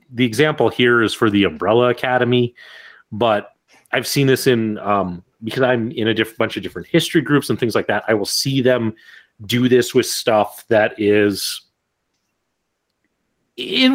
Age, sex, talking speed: 30-49, male, 165 wpm